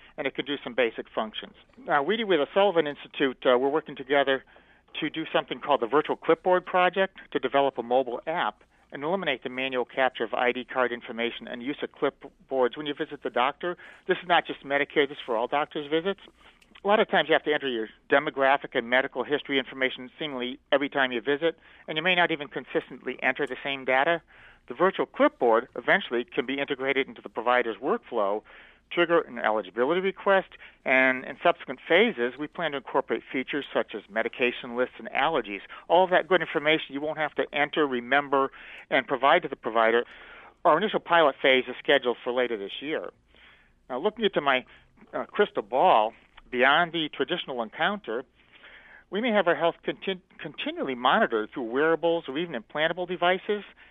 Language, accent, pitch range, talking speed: English, American, 130-170 Hz, 185 wpm